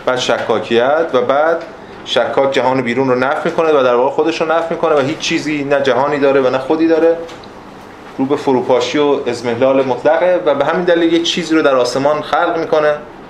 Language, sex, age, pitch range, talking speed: Persian, male, 30-49, 115-150 Hz, 200 wpm